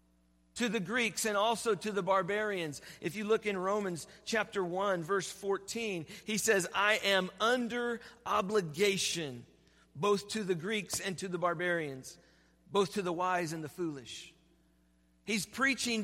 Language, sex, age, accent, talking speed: English, male, 40-59, American, 150 wpm